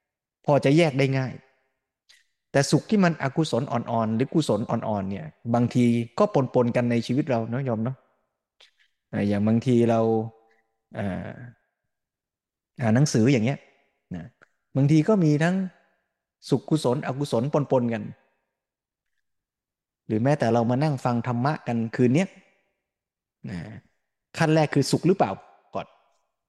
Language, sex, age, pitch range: Thai, male, 20-39, 115-145 Hz